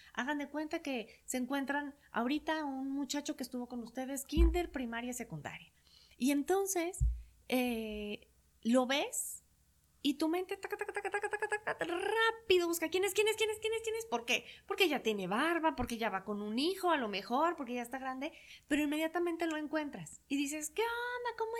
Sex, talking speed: female, 205 wpm